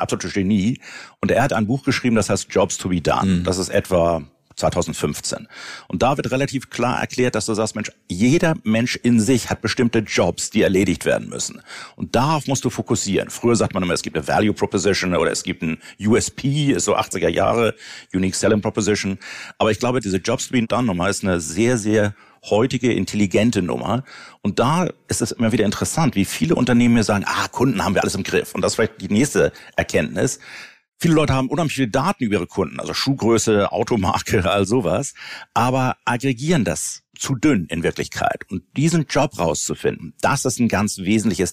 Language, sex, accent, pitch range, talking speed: German, male, German, 95-125 Hz, 195 wpm